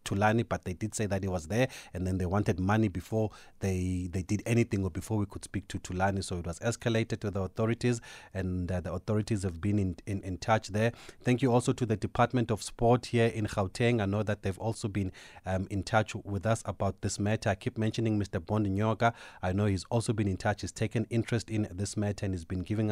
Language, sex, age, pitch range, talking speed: English, male, 30-49, 95-115 Hz, 240 wpm